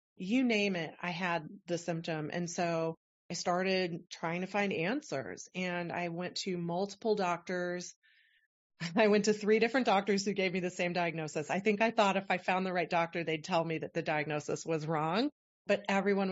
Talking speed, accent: 195 wpm, American